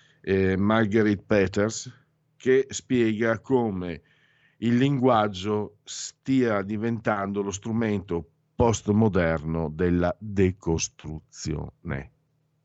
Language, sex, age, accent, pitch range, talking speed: Italian, male, 50-69, native, 90-115 Hz, 65 wpm